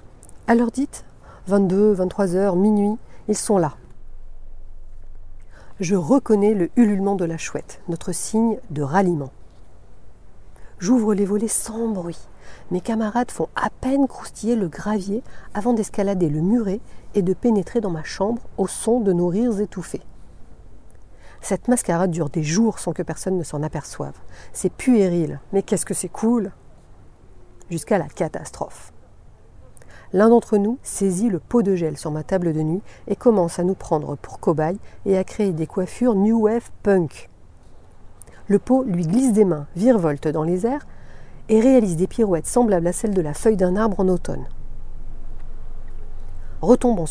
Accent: French